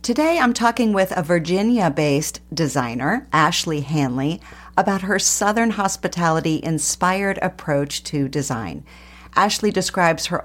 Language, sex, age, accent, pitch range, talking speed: English, female, 50-69, American, 145-200 Hz, 110 wpm